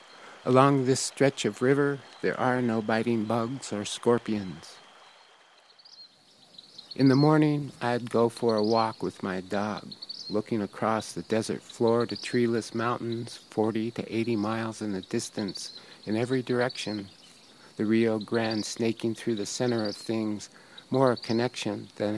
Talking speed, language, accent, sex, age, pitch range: 145 wpm, English, American, male, 50-69, 110-125 Hz